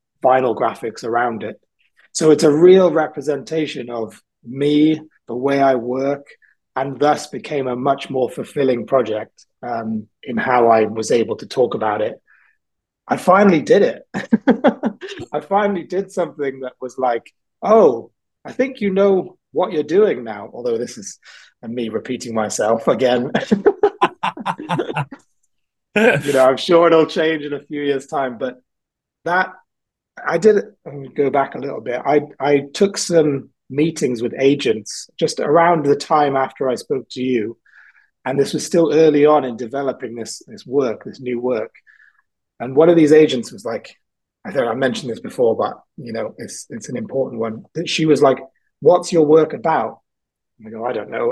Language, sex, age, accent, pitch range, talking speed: English, male, 30-49, British, 135-175 Hz, 170 wpm